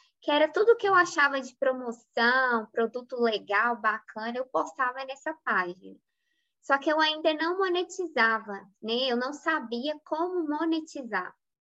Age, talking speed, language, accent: 20-39, 140 wpm, Portuguese, Brazilian